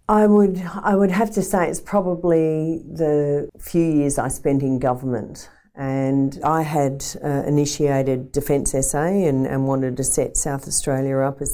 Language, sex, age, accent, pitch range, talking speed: English, female, 50-69, Australian, 135-160 Hz, 165 wpm